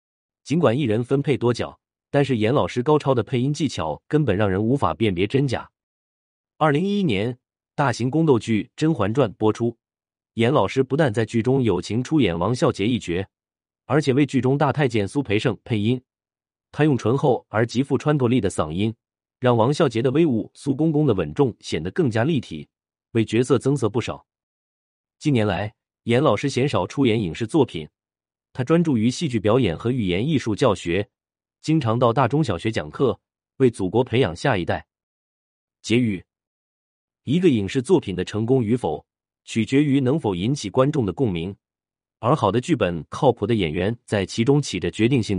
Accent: native